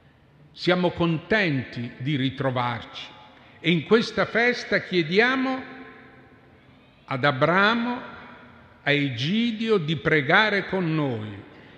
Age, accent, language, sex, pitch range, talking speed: 50-69, native, Italian, male, 125-165 Hz, 85 wpm